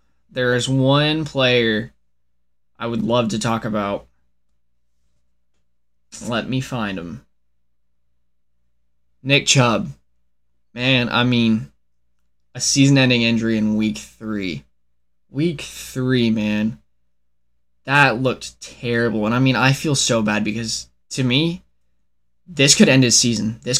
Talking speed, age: 120 wpm, 10-29